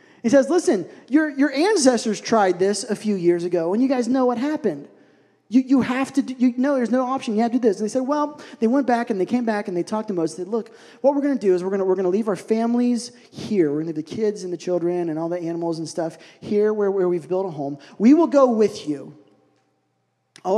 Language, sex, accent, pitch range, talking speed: English, male, American, 160-225 Hz, 275 wpm